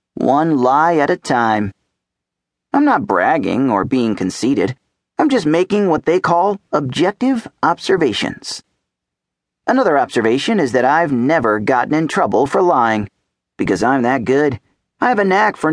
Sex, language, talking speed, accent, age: male, English, 150 wpm, American, 40-59